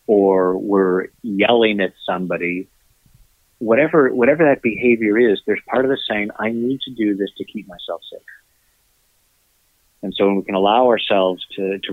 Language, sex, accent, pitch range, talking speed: English, male, American, 90-110 Hz, 165 wpm